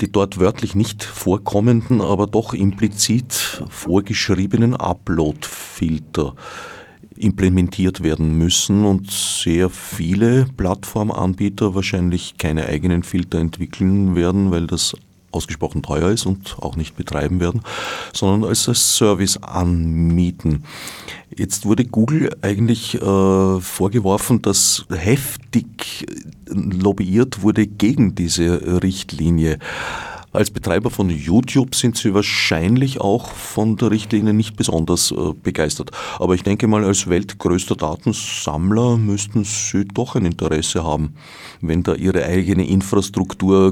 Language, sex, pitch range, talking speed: German, male, 90-105 Hz, 115 wpm